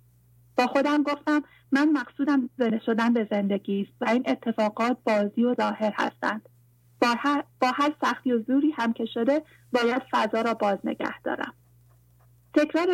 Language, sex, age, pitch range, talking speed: English, female, 30-49, 200-275 Hz, 155 wpm